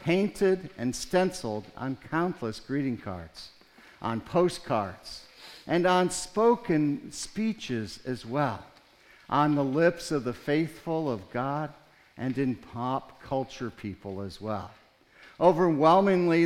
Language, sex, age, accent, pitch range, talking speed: English, male, 60-79, American, 115-160 Hz, 115 wpm